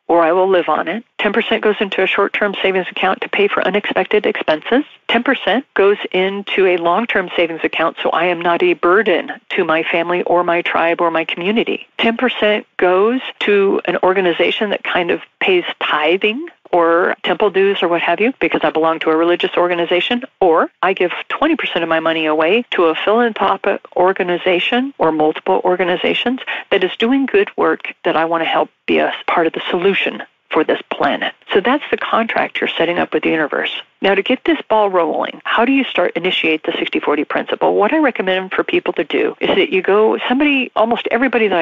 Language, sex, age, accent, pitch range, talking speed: English, female, 50-69, American, 175-235 Hz, 200 wpm